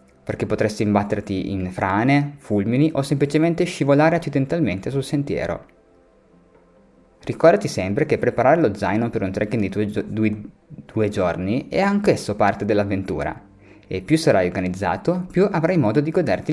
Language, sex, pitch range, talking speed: Italian, male, 100-150 Hz, 140 wpm